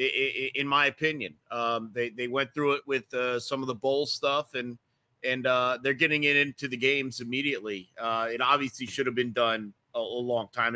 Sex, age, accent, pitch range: male, 30-49, American, 125-155 Hz